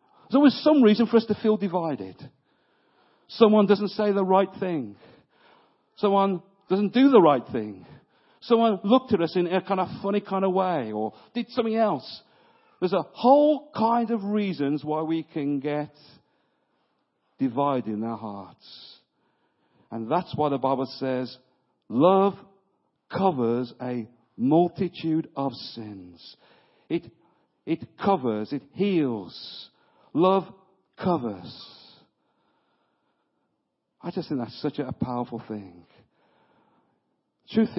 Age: 50-69